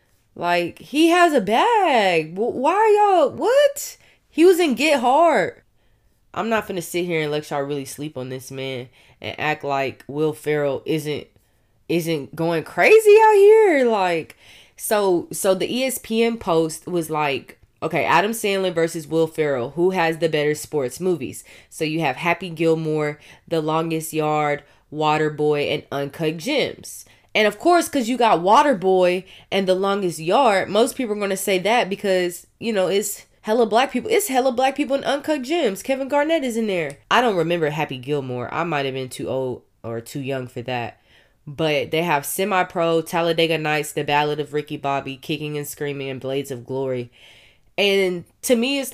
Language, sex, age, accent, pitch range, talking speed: English, female, 20-39, American, 145-220 Hz, 180 wpm